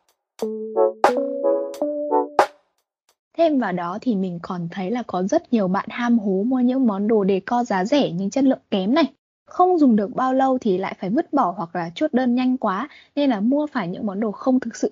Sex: female